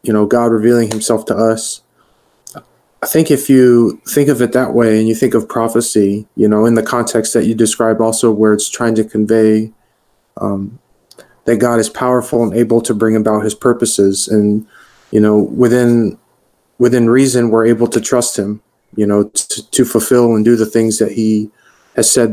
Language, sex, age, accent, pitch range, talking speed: English, male, 30-49, American, 110-120 Hz, 190 wpm